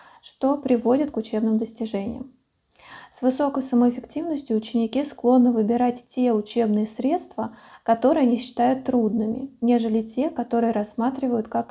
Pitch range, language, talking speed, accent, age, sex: 230-260 Hz, Russian, 120 wpm, native, 20-39, female